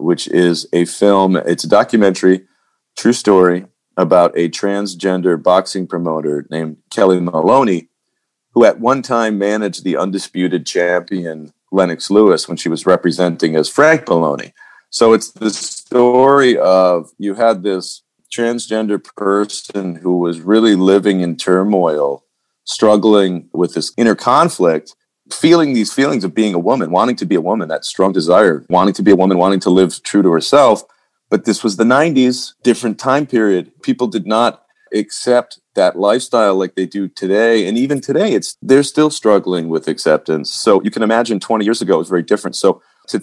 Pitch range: 90-110 Hz